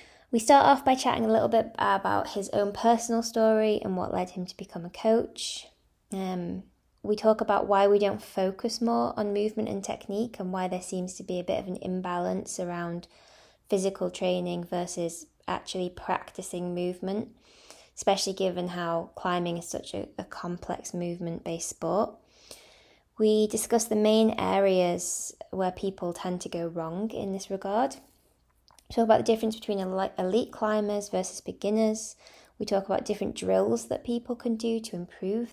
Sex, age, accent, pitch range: female, 20-39, British, 180-225 Hz